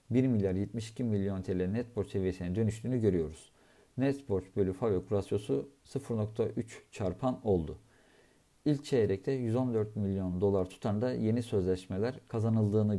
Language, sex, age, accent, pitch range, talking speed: Turkish, male, 50-69, native, 95-120 Hz, 125 wpm